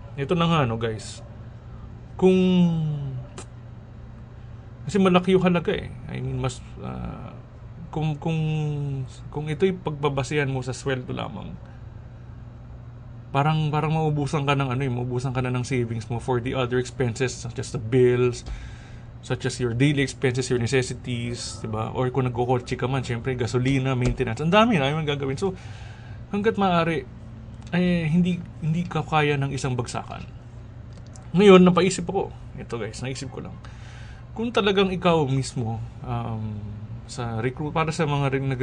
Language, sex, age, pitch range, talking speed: Filipino, male, 20-39, 115-150 Hz, 145 wpm